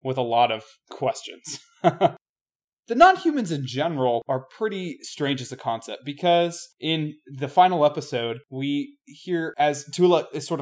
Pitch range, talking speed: 130-160 Hz, 145 wpm